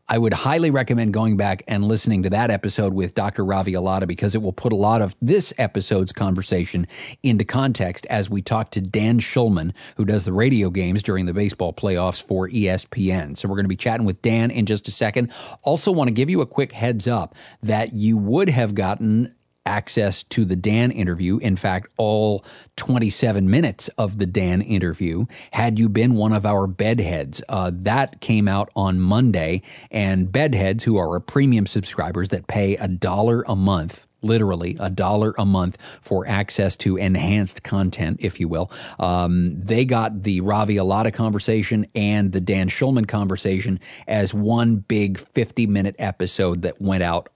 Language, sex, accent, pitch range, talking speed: English, male, American, 95-115 Hz, 180 wpm